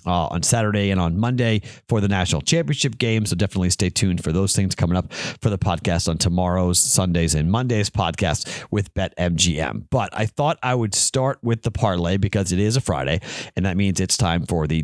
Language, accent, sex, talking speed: English, American, male, 215 wpm